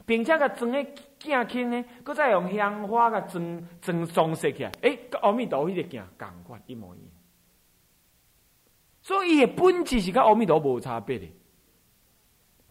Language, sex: Chinese, male